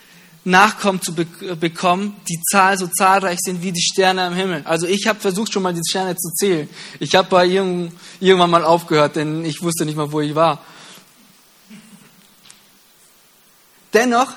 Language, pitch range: German, 170-200 Hz